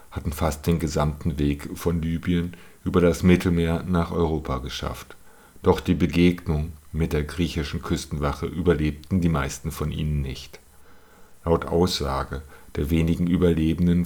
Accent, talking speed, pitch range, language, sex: German, 130 wpm, 80-90 Hz, German, male